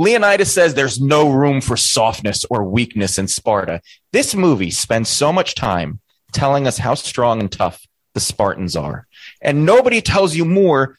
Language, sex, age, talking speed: English, male, 30-49, 170 wpm